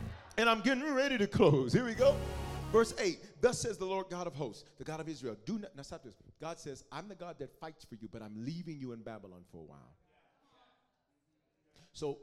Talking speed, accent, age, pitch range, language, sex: 225 wpm, American, 40-59, 125-185 Hz, English, male